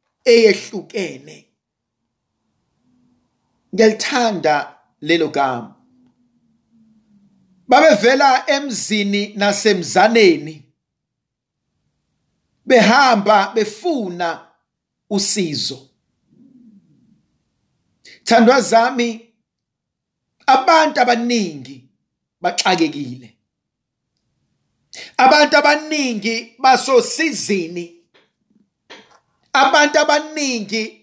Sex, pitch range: male, 185-280 Hz